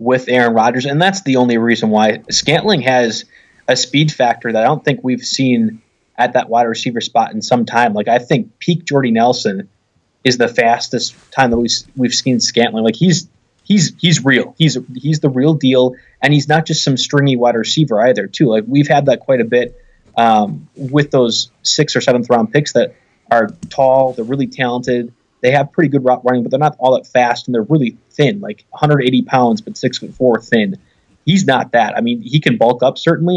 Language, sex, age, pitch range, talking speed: English, male, 20-39, 120-150 Hz, 205 wpm